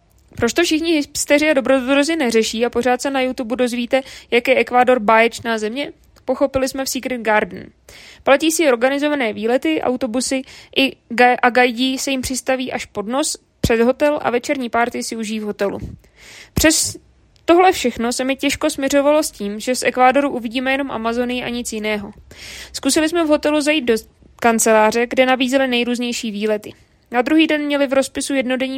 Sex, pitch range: female, 240-280 Hz